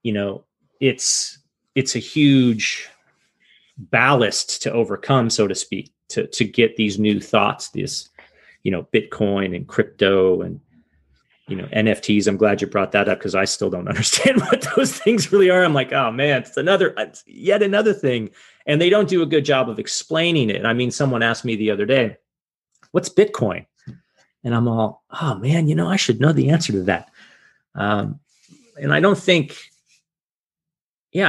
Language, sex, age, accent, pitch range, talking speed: English, male, 30-49, American, 110-150 Hz, 180 wpm